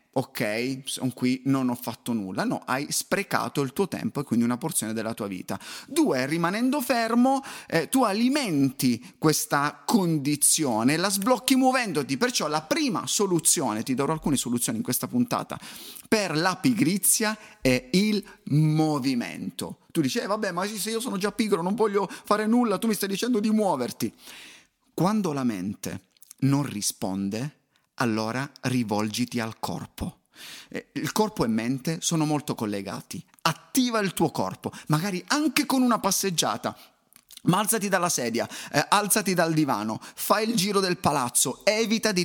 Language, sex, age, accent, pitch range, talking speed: Italian, male, 30-49, native, 140-215 Hz, 155 wpm